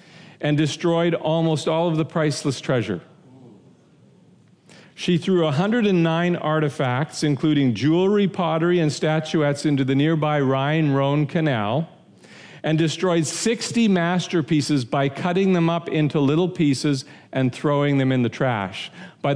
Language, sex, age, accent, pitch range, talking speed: English, male, 50-69, American, 140-175 Hz, 125 wpm